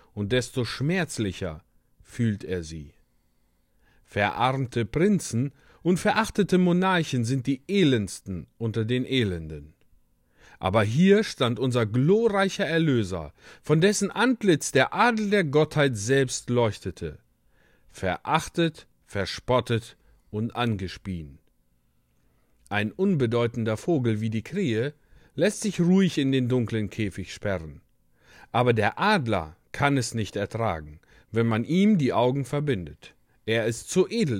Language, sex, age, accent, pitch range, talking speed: German, male, 40-59, German, 95-155 Hz, 115 wpm